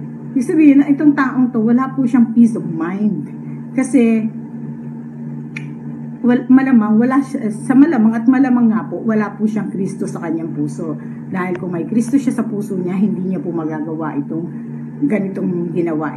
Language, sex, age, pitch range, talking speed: English, female, 50-69, 145-225 Hz, 160 wpm